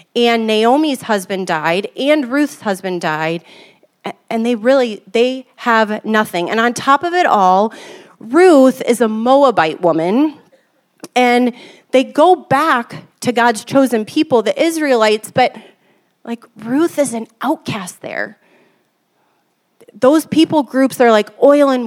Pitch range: 210-280 Hz